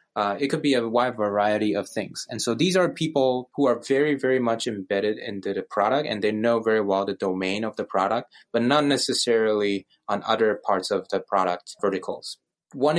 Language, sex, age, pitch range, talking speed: English, male, 20-39, 105-130 Hz, 205 wpm